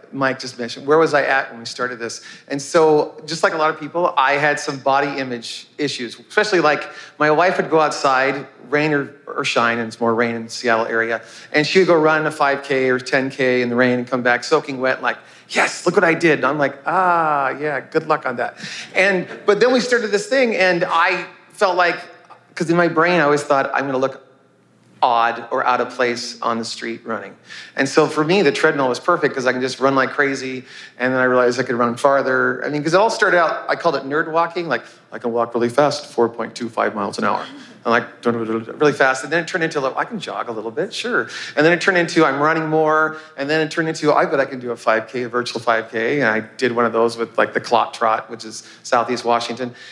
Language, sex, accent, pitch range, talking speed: English, male, American, 120-160 Hz, 250 wpm